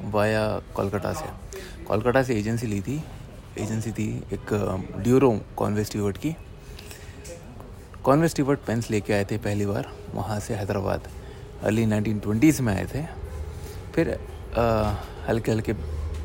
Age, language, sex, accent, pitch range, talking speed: 30-49, Hindi, male, native, 100-125 Hz, 120 wpm